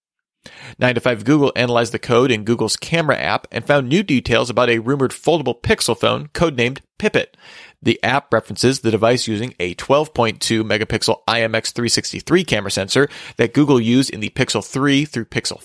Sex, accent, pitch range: male, American, 110-135 Hz